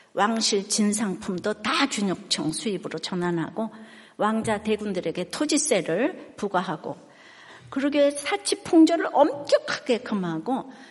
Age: 60-79